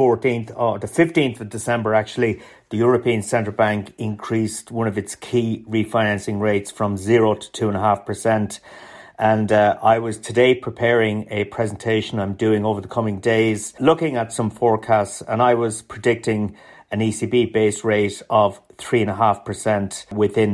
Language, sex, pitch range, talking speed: English, male, 105-120 Hz, 170 wpm